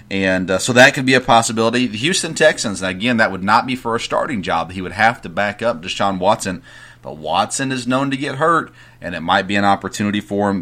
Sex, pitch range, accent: male, 95-125 Hz, American